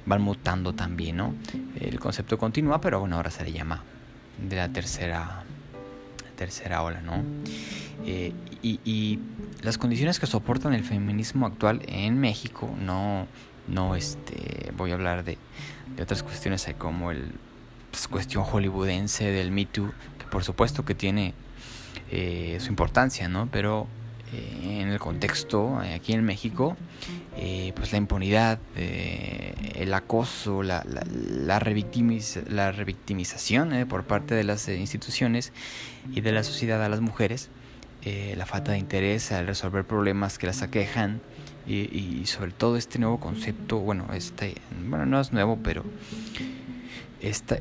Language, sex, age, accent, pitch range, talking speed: Spanish, male, 20-39, Mexican, 95-120 Hz, 150 wpm